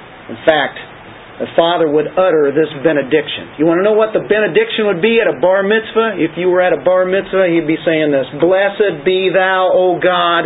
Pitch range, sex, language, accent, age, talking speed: 150-195 Hz, male, English, American, 50-69, 210 wpm